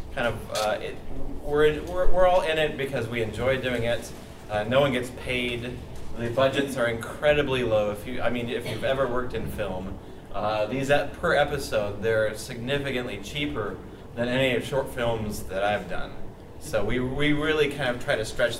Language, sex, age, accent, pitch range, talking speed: English, male, 30-49, American, 110-145 Hz, 190 wpm